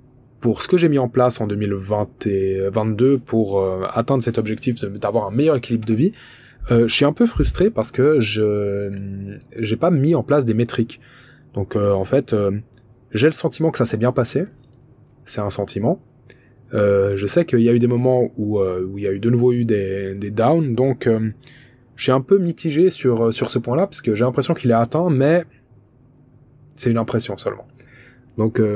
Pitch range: 110-135 Hz